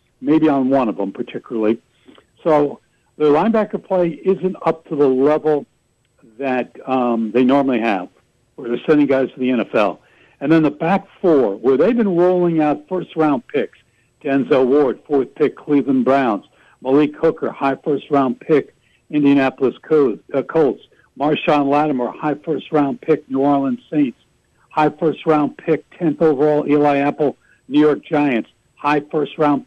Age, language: 60-79, English